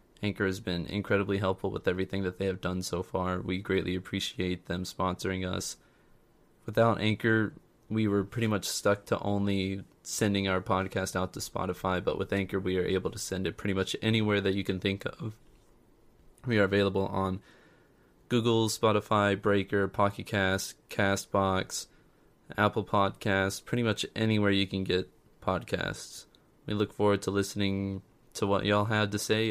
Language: English